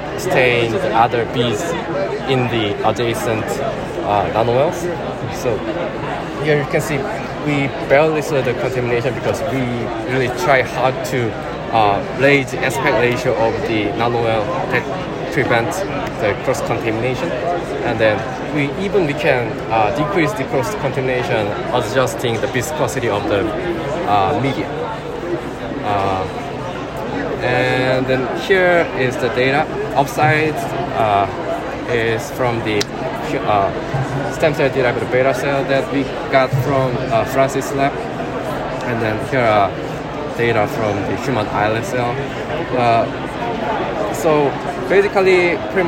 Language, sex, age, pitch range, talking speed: English, male, 20-39, 120-145 Hz, 125 wpm